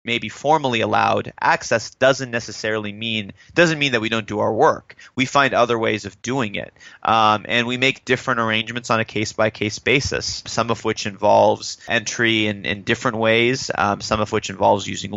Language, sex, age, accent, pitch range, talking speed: English, male, 30-49, American, 105-125 Hz, 190 wpm